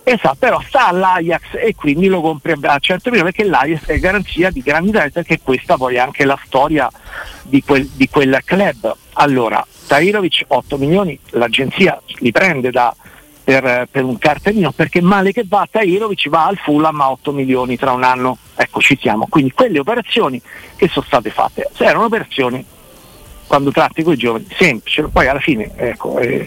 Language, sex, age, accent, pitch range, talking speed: Italian, male, 50-69, native, 125-170 Hz, 175 wpm